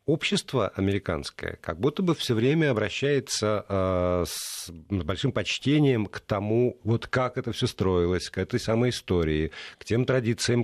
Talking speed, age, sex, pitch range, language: 150 wpm, 50-69, male, 95-135 Hz, Russian